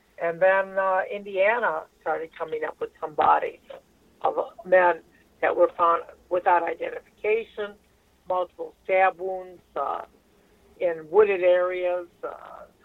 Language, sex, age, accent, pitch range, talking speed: English, female, 60-79, American, 175-210 Hz, 115 wpm